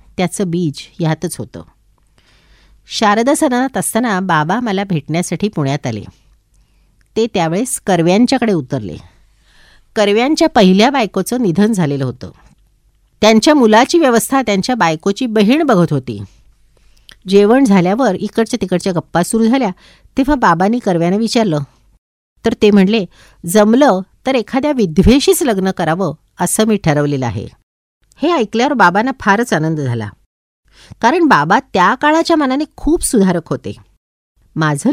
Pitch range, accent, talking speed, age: 150-230 Hz, native, 120 wpm, 50-69